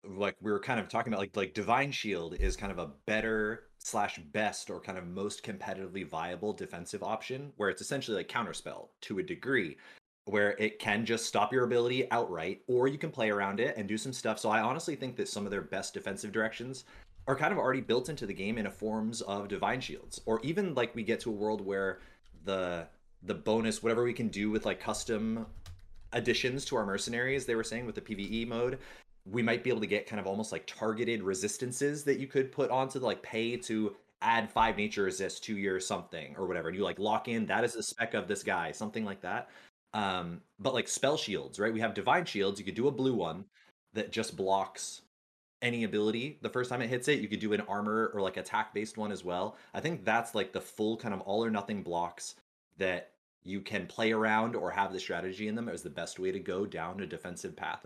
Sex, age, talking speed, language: male, 30-49, 230 wpm, English